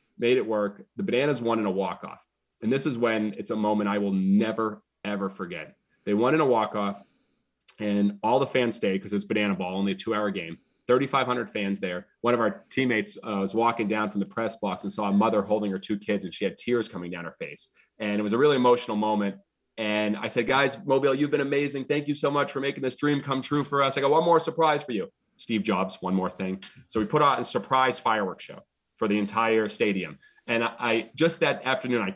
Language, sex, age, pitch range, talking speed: English, male, 30-49, 100-130 Hz, 235 wpm